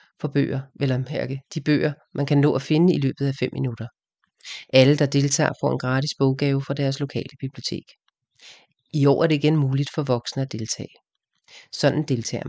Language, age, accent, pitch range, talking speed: English, 40-59, Danish, 135-165 Hz, 185 wpm